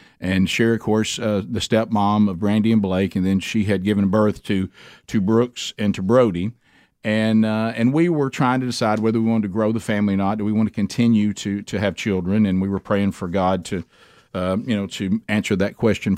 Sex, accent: male, American